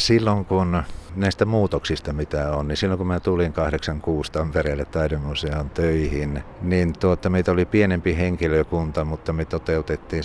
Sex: male